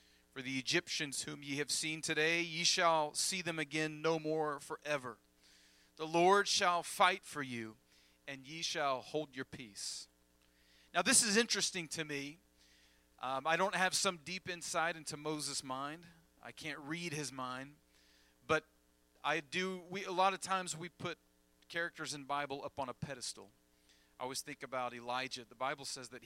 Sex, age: male, 40-59